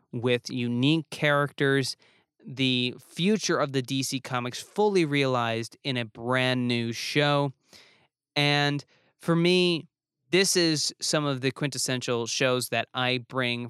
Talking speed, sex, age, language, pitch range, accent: 125 wpm, male, 20-39, English, 120-145 Hz, American